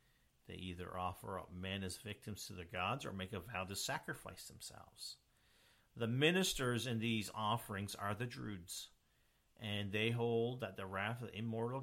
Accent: American